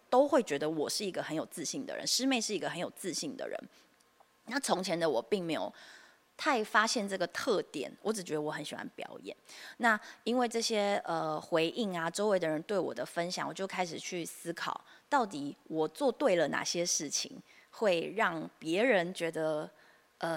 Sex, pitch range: female, 165-240 Hz